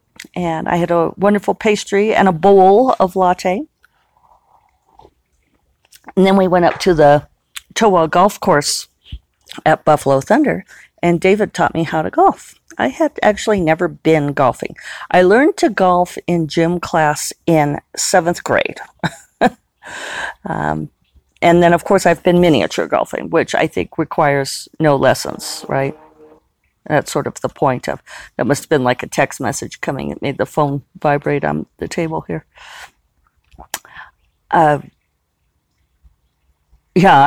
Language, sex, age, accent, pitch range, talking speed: English, female, 50-69, American, 140-185 Hz, 145 wpm